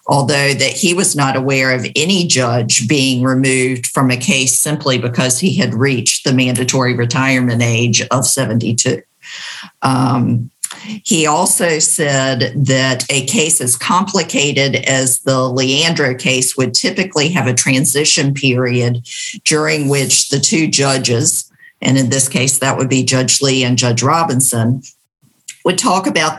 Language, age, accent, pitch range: English, 50-69, American, 125-145 Hz